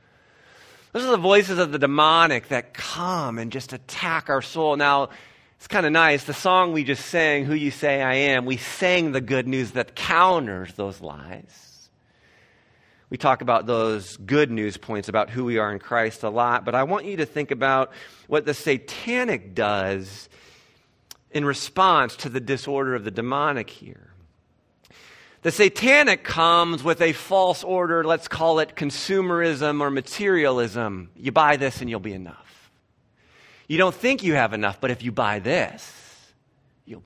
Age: 40-59